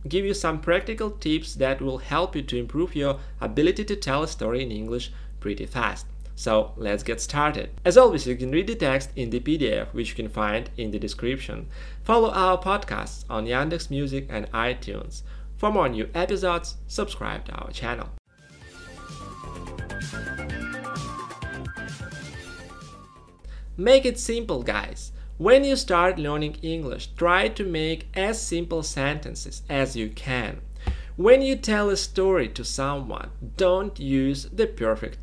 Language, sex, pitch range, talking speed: English, male, 120-190 Hz, 150 wpm